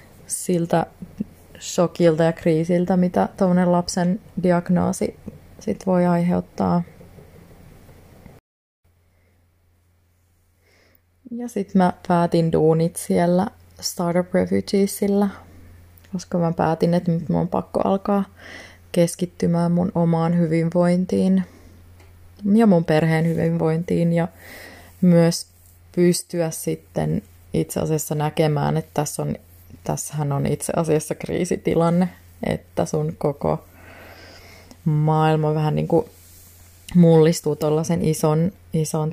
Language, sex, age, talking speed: Finnish, female, 20-39, 90 wpm